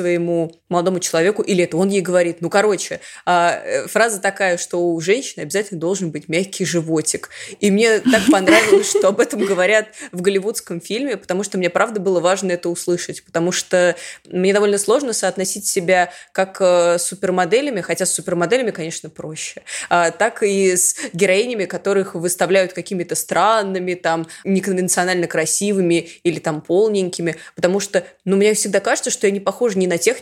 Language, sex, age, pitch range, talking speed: Russian, female, 20-39, 170-195 Hz, 165 wpm